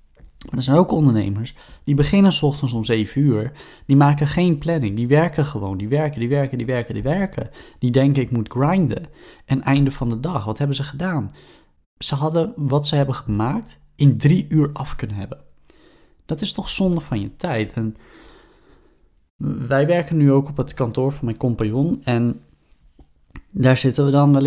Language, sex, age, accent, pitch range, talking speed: Dutch, male, 20-39, Dutch, 110-145 Hz, 185 wpm